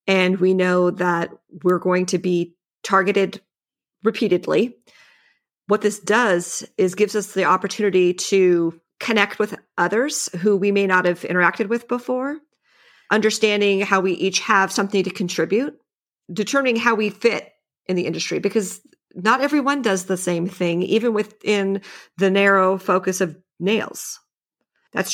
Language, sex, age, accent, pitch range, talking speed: English, female, 40-59, American, 185-230 Hz, 145 wpm